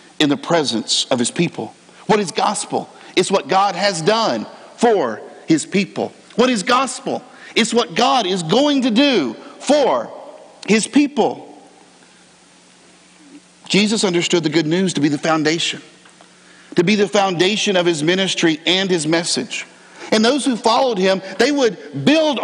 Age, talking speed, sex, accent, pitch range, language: 50-69, 150 wpm, male, American, 190-255 Hz, English